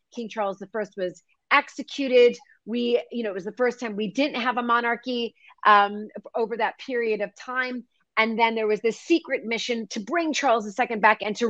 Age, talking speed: 30-49, 200 wpm